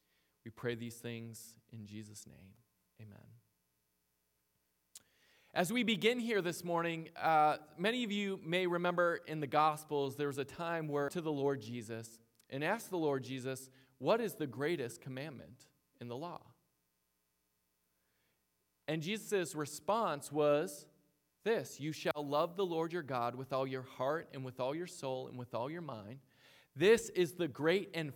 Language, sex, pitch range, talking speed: English, male, 125-180 Hz, 160 wpm